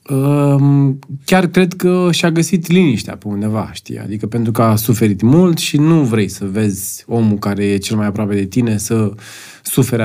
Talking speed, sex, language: 180 wpm, male, Romanian